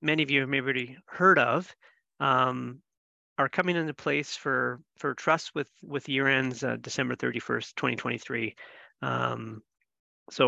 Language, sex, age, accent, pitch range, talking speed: English, male, 30-49, American, 120-155 Hz, 155 wpm